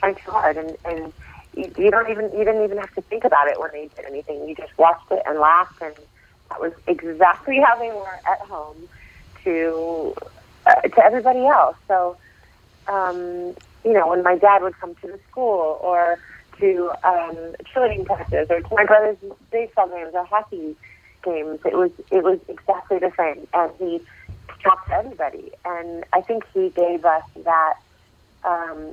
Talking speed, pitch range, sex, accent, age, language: 180 wpm, 155-205 Hz, female, American, 30-49, English